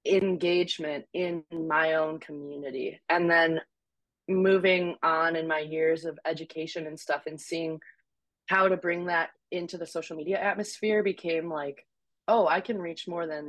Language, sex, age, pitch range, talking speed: English, female, 20-39, 160-195 Hz, 155 wpm